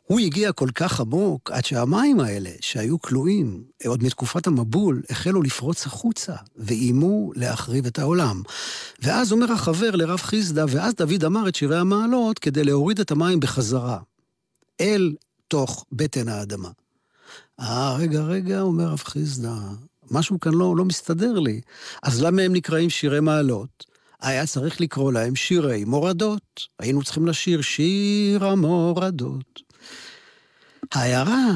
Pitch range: 125-175 Hz